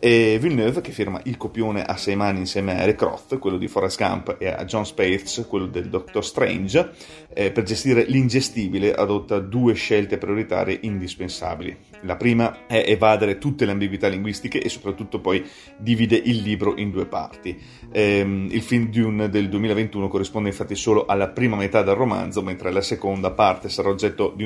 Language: Italian